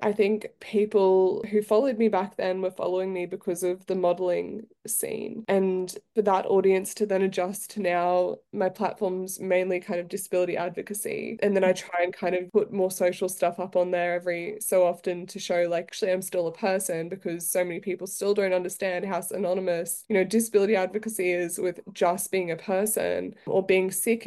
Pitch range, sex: 180-195 Hz, female